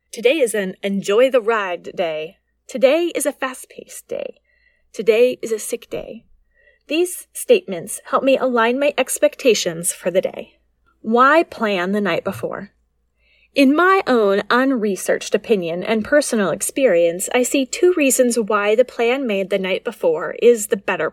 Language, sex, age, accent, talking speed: English, female, 30-49, American, 155 wpm